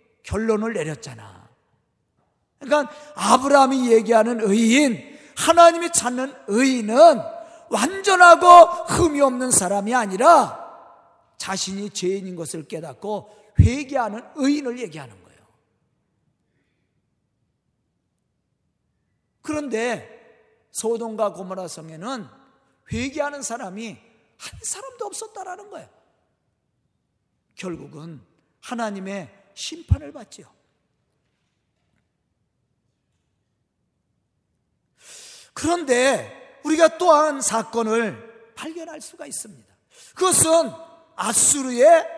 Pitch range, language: 220-325 Hz, Korean